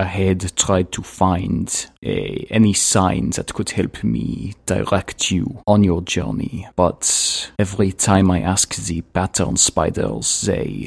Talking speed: 145 wpm